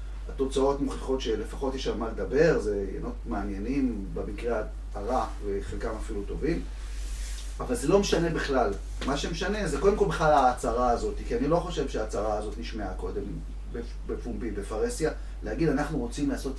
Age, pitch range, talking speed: 30-49, 110-155 Hz, 155 wpm